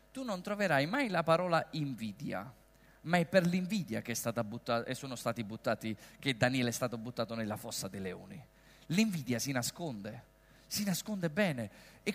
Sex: male